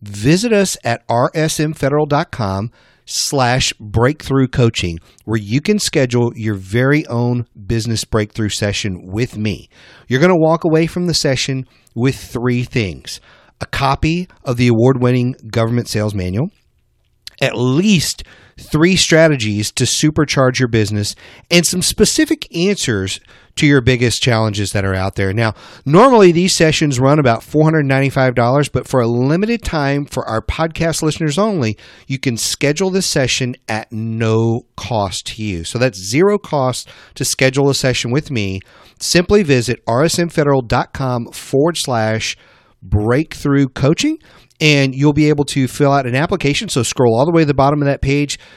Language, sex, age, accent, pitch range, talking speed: English, male, 40-59, American, 115-155 Hz, 150 wpm